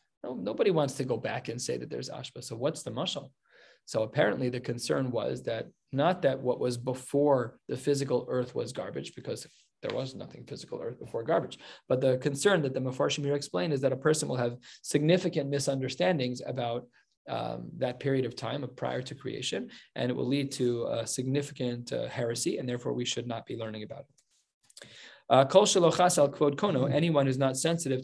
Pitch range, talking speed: 125-145 Hz, 185 wpm